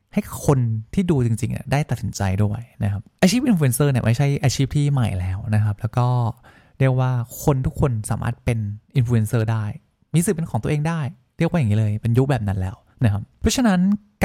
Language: Thai